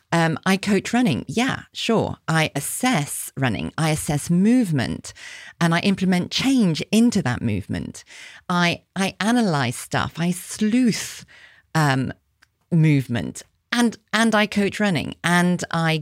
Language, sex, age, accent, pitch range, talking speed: English, female, 40-59, British, 140-195 Hz, 125 wpm